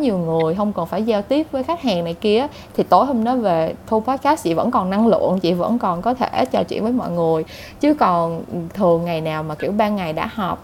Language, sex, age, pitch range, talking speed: Vietnamese, female, 20-39, 175-245 Hz, 255 wpm